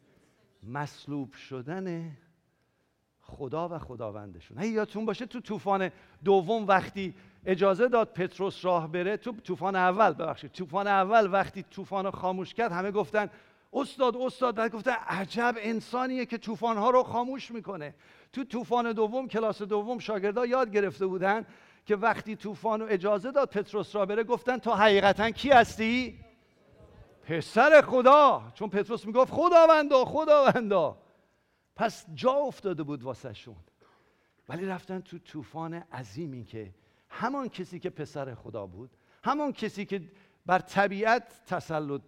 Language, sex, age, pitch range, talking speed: English, male, 50-69, 165-225 Hz, 135 wpm